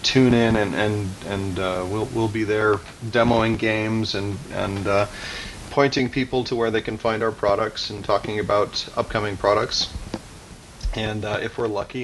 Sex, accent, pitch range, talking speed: male, American, 100-115 Hz, 170 wpm